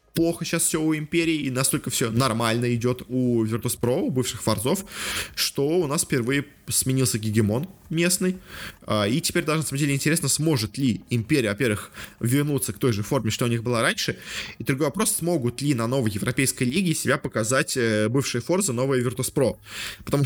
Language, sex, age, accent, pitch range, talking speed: Russian, male, 20-39, native, 115-145 Hz, 175 wpm